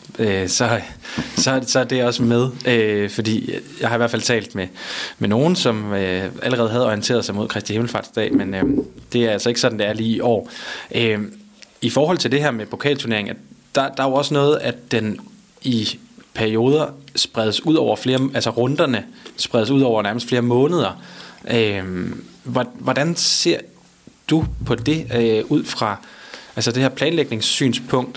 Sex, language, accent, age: male, Danish, native, 20-39